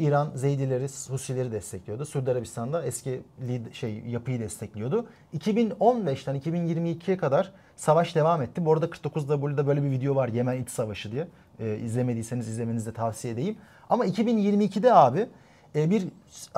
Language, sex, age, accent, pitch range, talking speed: Turkish, male, 40-59, native, 125-185 Hz, 145 wpm